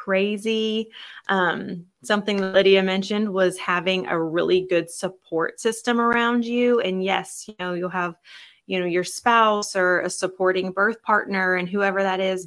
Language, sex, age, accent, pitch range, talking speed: English, female, 20-39, American, 185-230 Hz, 160 wpm